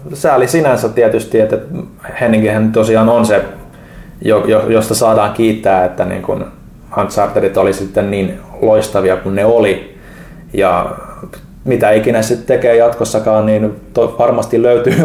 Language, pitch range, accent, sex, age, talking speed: Finnish, 105-115 Hz, native, male, 20-39, 125 wpm